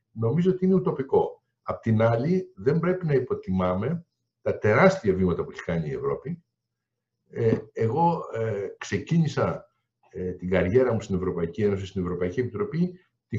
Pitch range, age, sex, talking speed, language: 115-165 Hz, 60-79, male, 140 wpm, Greek